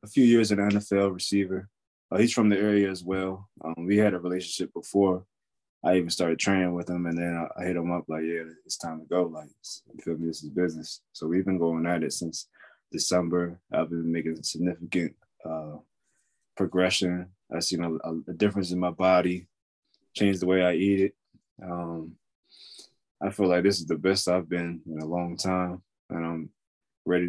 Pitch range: 85-105 Hz